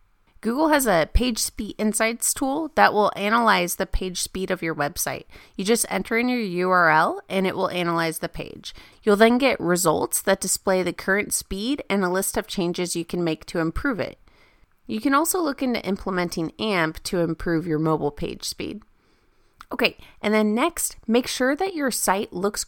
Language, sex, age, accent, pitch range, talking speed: English, female, 30-49, American, 180-240 Hz, 185 wpm